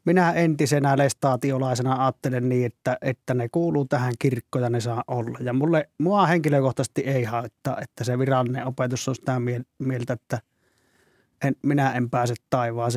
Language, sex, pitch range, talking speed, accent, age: Finnish, male, 125-150 Hz, 160 wpm, native, 30-49